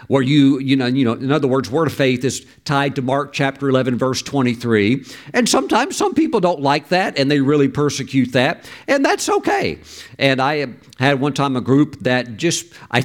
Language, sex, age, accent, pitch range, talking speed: English, male, 50-69, American, 125-160 Hz, 205 wpm